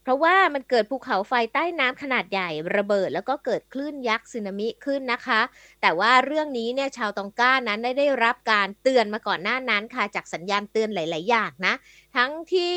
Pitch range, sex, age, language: 215-280 Hz, female, 30-49, Thai